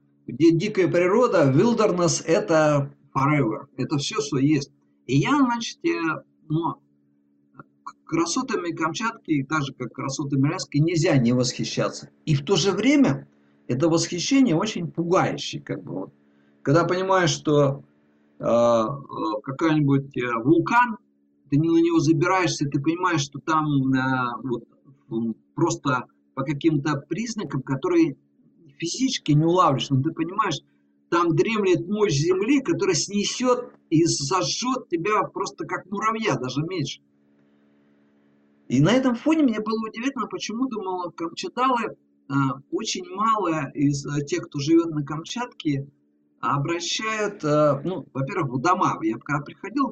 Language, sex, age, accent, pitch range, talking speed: Russian, male, 50-69, native, 130-185 Hz, 125 wpm